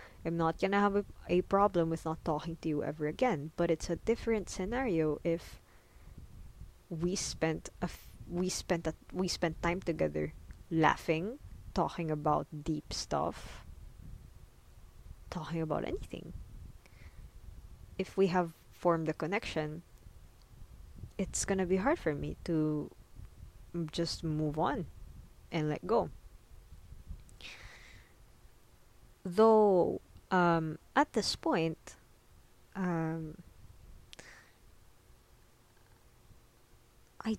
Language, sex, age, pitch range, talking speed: English, female, 20-39, 155-195 Hz, 110 wpm